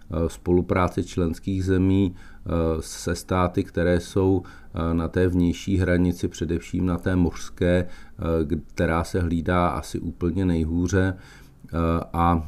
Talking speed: 105 wpm